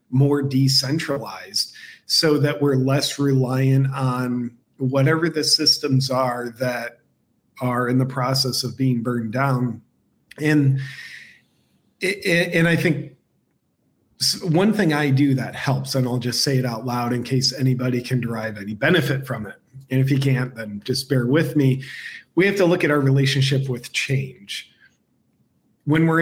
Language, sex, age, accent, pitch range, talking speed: English, male, 40-59, American, 130-155 Hz, 155 wpm